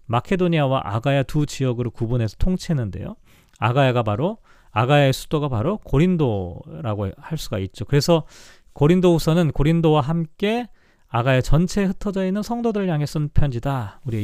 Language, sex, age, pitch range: Korean, male, 40-59, 120-170 Hz